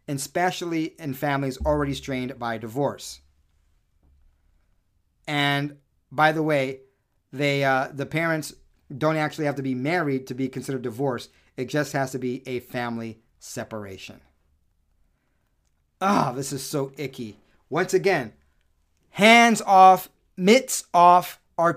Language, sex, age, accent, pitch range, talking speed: English, male, 40-59, American, 120-160 Hz, 125 wpm